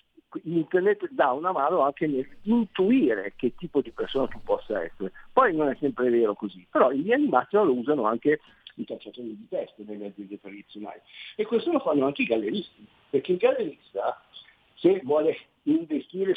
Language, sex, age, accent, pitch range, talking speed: Italian, male, 50-69, native, 130-190 Hz, 170 wpm